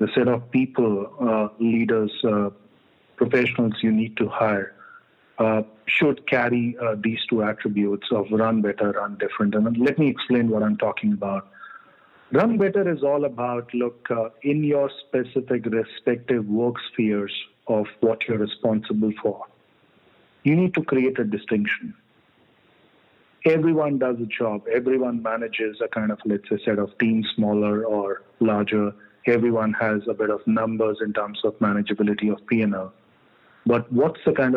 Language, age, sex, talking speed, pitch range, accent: English, 40-59, male, 155 wpm, 105-125 Hz, Indian